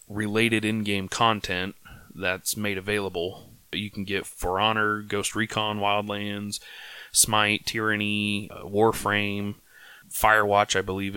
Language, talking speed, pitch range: English, 120 wpm, 100-120 Hz